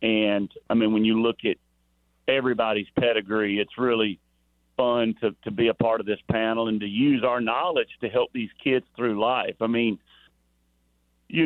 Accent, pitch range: American, 100-125 Hz